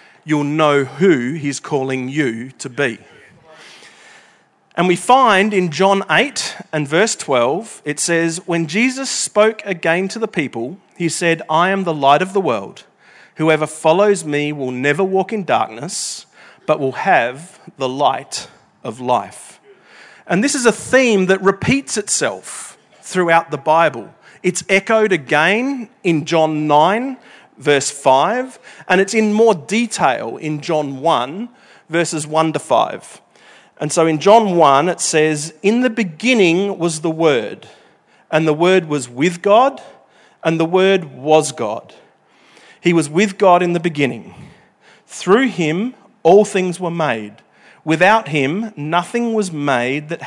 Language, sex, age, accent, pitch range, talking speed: English, male, 40-59, Australian, 150-205 Hz, 150 wpm